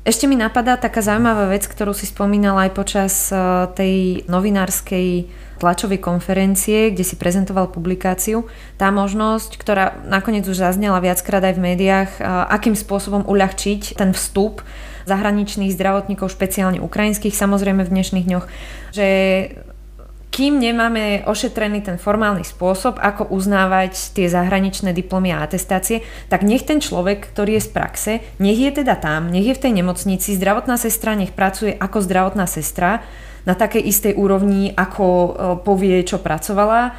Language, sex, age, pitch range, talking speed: Slovak, female, 20-39, 185-210 Hz, 145 wpm